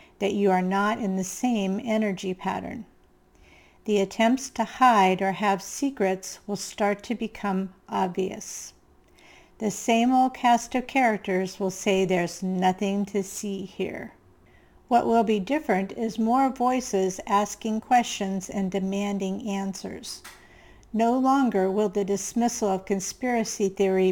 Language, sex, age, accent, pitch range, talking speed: English, female, 50-69, American, 195-230 Hz, 135 wpm